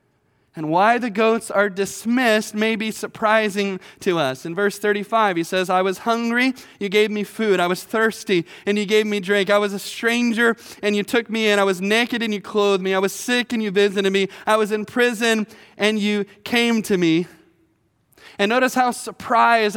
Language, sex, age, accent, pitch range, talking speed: English, male, 20-39, American, 210-240 Hz, 205 wpm